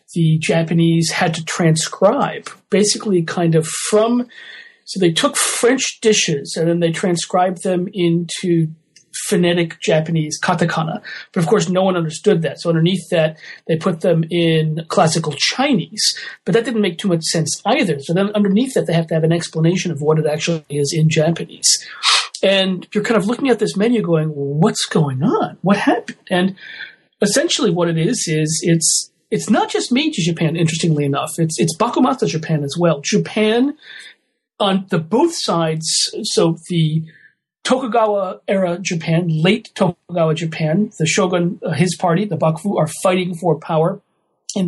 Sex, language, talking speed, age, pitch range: male, English, 165 wpm, 40-59, 160-205 Hz